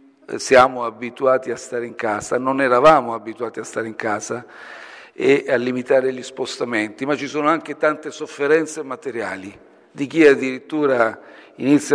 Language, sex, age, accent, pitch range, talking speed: Italian, male, 50-69, native, 130-155 Hz, 145 wpm